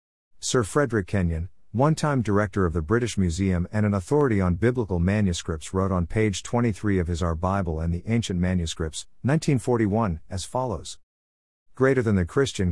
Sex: male